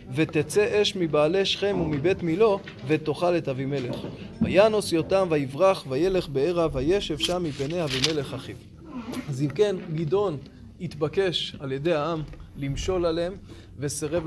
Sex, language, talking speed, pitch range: male, Hebrew, 125 wpm, 150-190 Hz